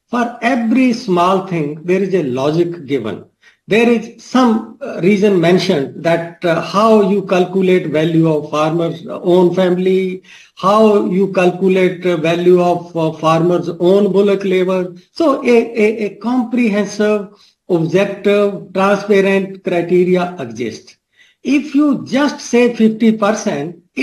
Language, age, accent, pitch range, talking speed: English, 50-69, Indian, 165-215 Hz, 120 wpm